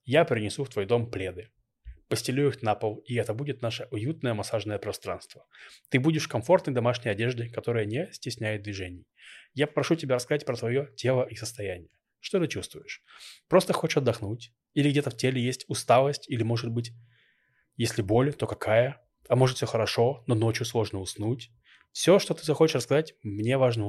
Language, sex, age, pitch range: Russian, male, 20-39, 110-135 Hz